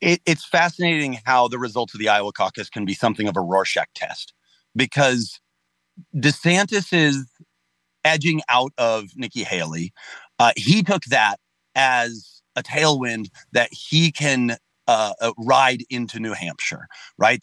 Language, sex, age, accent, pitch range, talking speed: English, male, 40-59, American, 105-150 Hz, 145 wpm